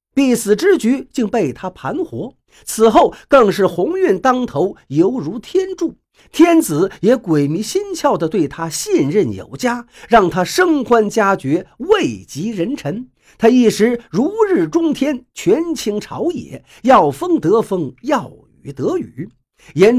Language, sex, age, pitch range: Chinese, male, 50-69, 195-300 Hz